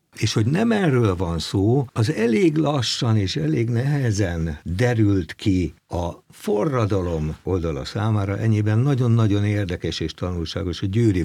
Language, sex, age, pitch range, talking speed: Hungarian, male, 60-79, 75-105 Hz, 135 wpm